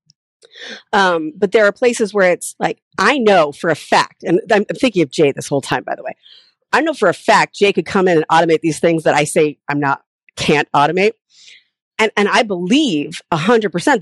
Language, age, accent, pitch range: English, 40-59, American, 165-230 Hz